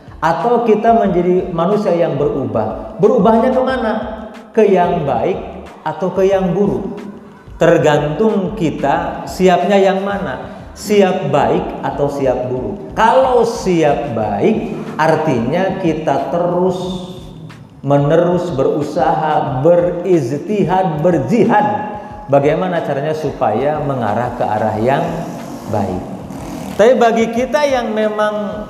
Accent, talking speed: native, 100 wpm